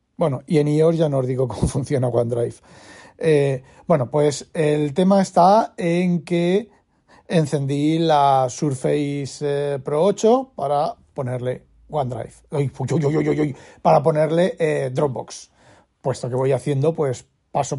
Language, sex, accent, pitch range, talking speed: Spanish, male, Spanish, 140-165 Hz, 150 wpm